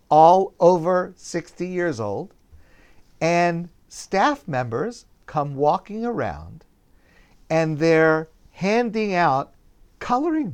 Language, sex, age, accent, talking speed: English, male, 50-69, American, 90 wpm